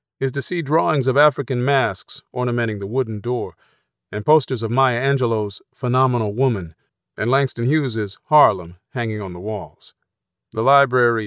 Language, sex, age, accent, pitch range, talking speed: English, male, 40-59, American, 100-130 Hz, 150 wpm